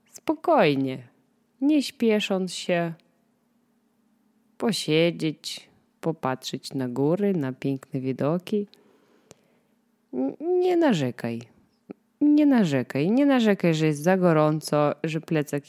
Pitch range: 150-225 Hz